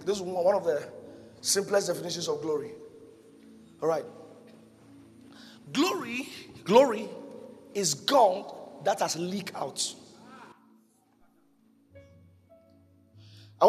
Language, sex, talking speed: English, male, 85 wpm